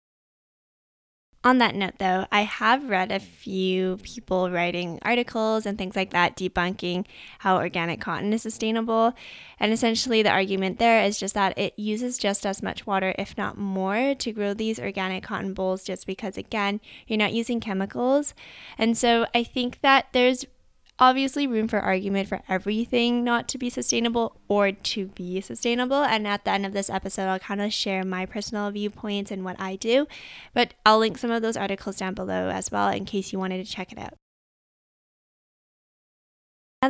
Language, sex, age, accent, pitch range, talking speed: English, female, 10-29, American, 190-235 Hz, 180 wpm